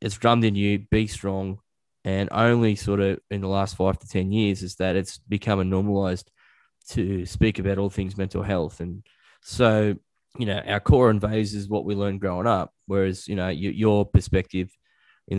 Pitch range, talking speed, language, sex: 95-100 Hz, 190 wpm, English, male